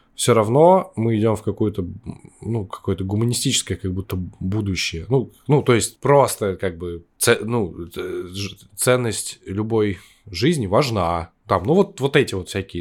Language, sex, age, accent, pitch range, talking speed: Russian, male, 10-29, native, 95-120 Hz, 135 wpm